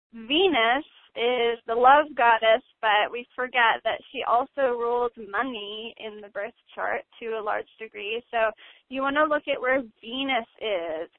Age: 20-39